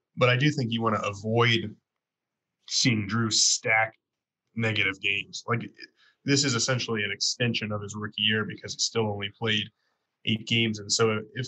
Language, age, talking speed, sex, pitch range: English, 20-39, 175 wpm, male, 105-120 Hz